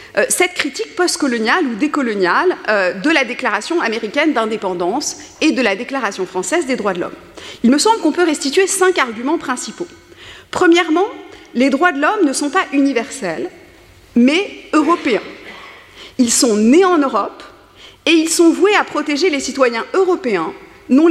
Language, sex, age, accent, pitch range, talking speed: French, female, 40-59, French, 245-355 Hz, 155 wpm